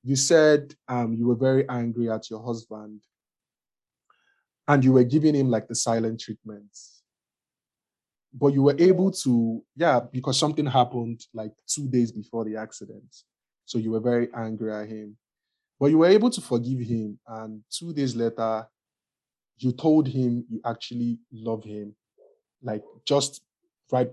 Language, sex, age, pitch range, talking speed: English, male, 20-39, 110-135 Hz, 155 wpm